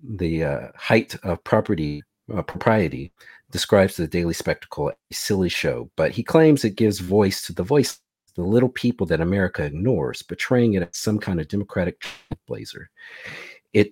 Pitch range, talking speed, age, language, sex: 90-125 Hz, 165 wpm, 50-69, English, male